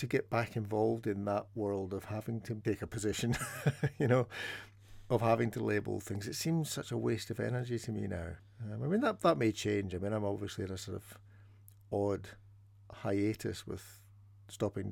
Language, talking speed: English, 195 wpm